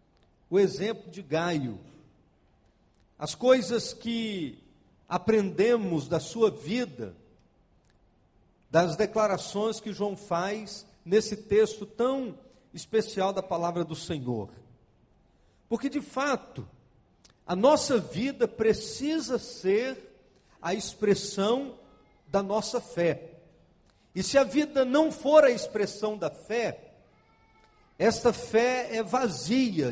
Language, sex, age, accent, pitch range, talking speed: Portuguese, male, 50-69, Brazilian, 185-250 Hz, 100 wpm